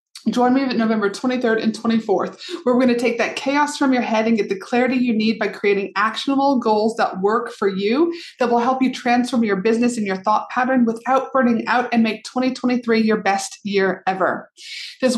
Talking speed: 210 wpm